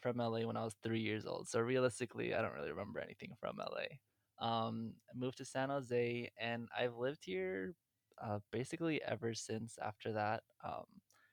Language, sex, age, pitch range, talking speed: English, male, 20-39, 110-125 Hz, 180 wpm